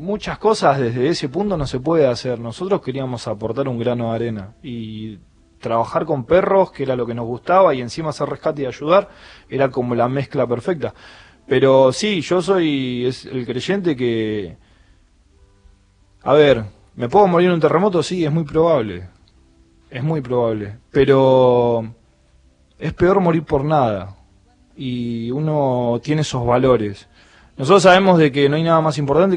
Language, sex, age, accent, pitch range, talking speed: Spanish, male, 20-39, Argentinian, 110-150 Hz, 165 wpm